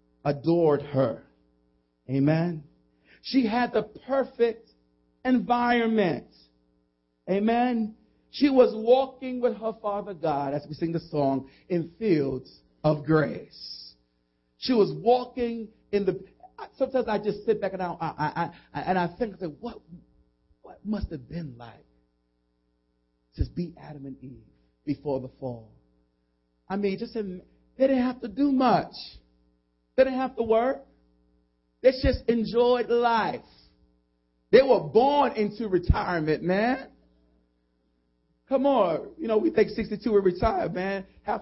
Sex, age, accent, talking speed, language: male, 40-59, American, 130 wpm, English